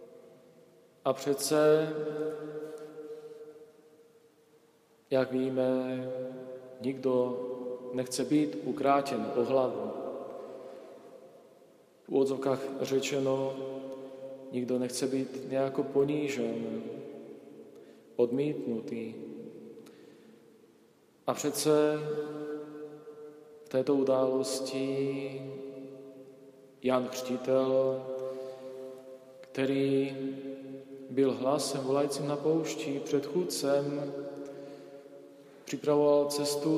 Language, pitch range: Slovak, 130-145 Hz